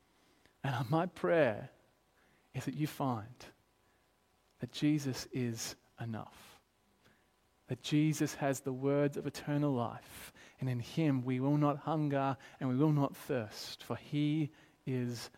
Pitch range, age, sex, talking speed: 135-175 Hz, 30-49, male, 135 wpm